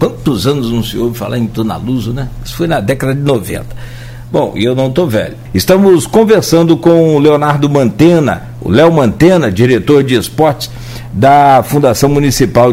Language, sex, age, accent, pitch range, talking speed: Portuguese, male, 60-79, Brazilian, 120-160 Hz, 170 wpm